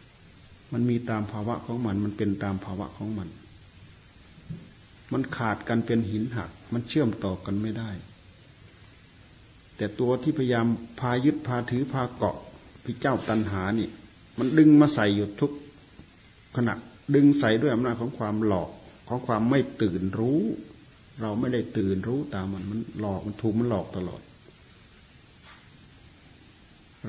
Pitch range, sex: 100-125 Hz, male